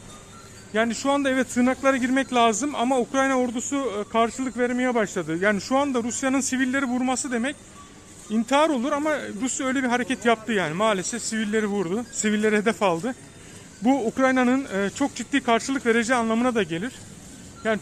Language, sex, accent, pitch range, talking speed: Turkish, male, native, 215-255 Hz, 150 wpm